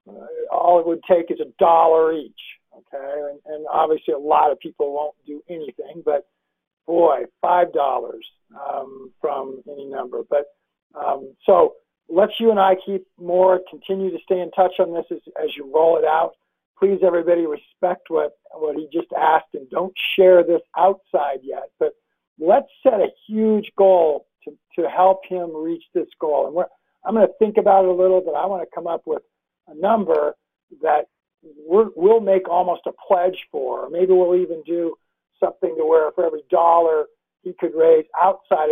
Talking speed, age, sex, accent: 180 wpm, 60-79, male, American